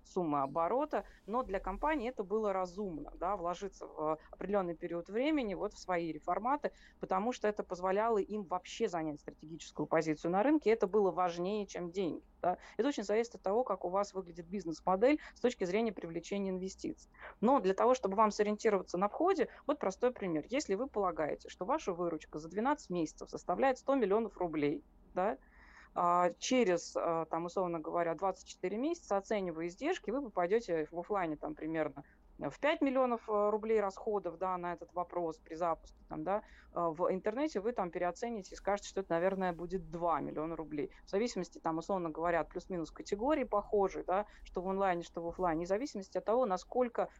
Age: 20-39